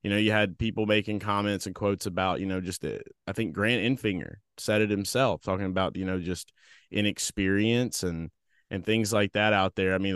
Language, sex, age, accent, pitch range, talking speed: English, male, 20-39, American, 100-130 Hz, 215 wpm